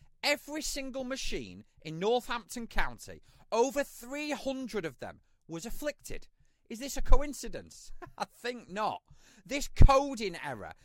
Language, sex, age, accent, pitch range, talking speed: English, male, 30-49, British, 190-275 Hz, 120 wpm